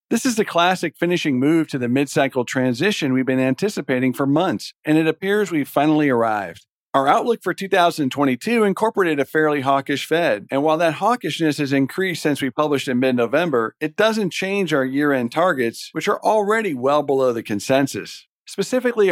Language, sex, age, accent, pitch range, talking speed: English, male, 50-69, American, 130-170 Hz, 175 wpm